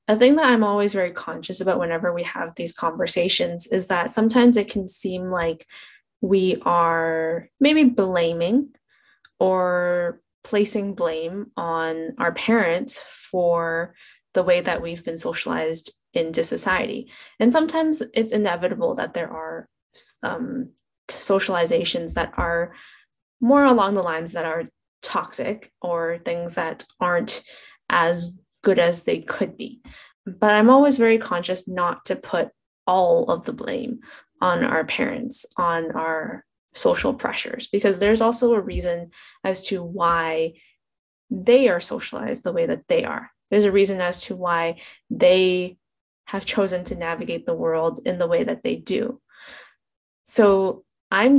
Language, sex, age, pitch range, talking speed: English, female, 10-29, 175-245 Hz, 140 wpm